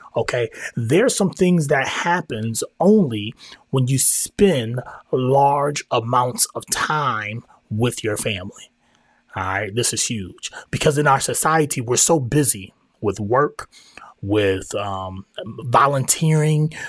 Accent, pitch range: American, 110-155 Hz